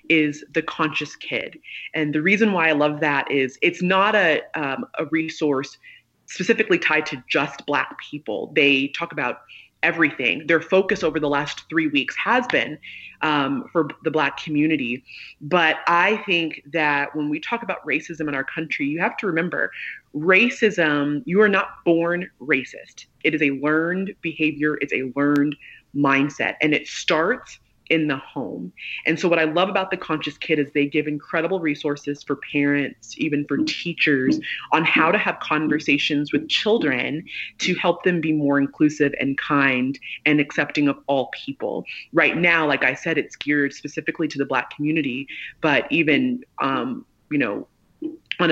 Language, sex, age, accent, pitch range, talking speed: English, female, 30-49, American, 145-175 Hz, 170 wpm